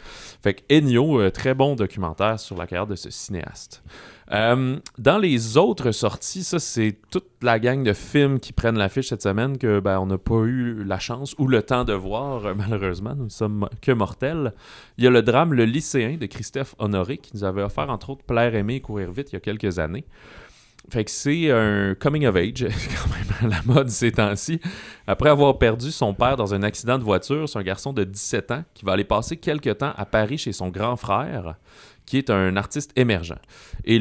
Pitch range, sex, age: 95-130 Hz, male, 30-49